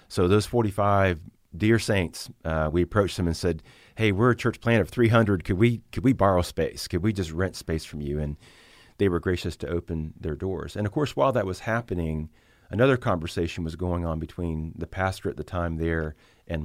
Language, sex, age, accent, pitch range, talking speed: English, male, 40-59, American, 80-100 Hz, 215 wpm